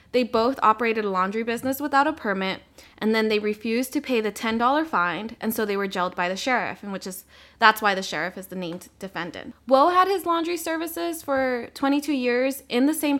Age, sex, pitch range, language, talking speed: 20-39, female, 195-250 Hz, English, 220 wpm